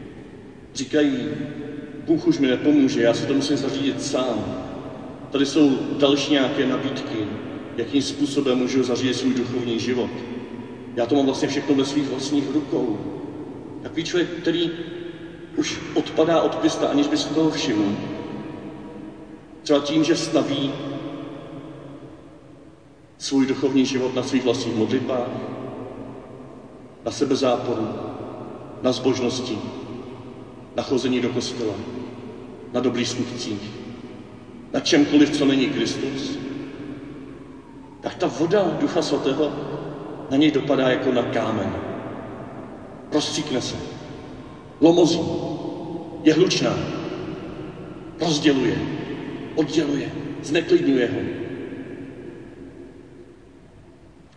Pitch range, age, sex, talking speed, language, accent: 125-150 Hz, 40-59, male, 100 wpm, Czech, native